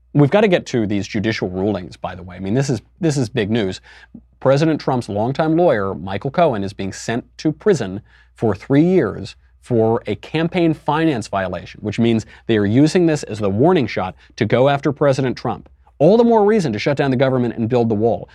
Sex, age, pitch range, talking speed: male, 30-49, 105-150 Hz, 215 wpm